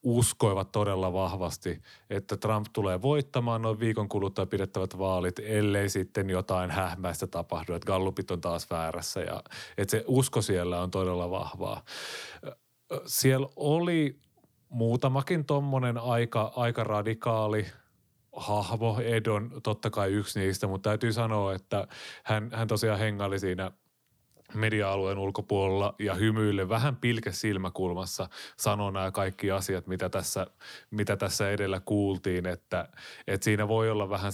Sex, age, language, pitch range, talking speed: male, 30-49, Finnish, 95-110 Hz, 130 wpm